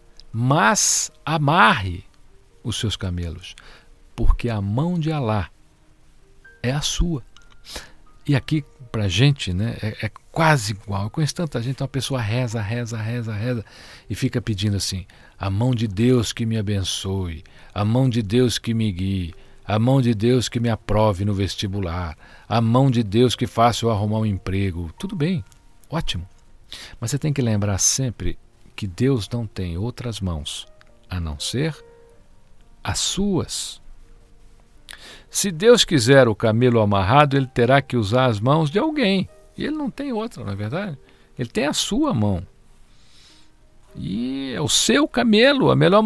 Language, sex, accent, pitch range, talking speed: Portuguese, male, Brazilian, 100-135 Hz, 160 wpm